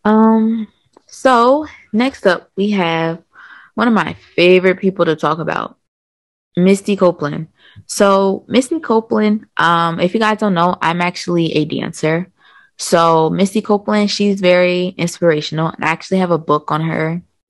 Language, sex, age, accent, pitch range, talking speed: English, female, 20-39, American, 155-200 Hz, 145 wpm